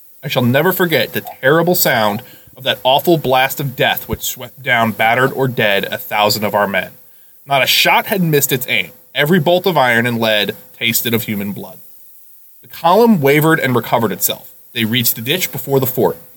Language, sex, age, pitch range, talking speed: English, male, 20-39, 115-145 Hz, 200 wpm